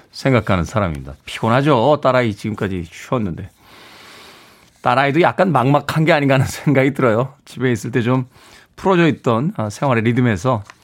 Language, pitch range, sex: Korean, 120-170 Hz, male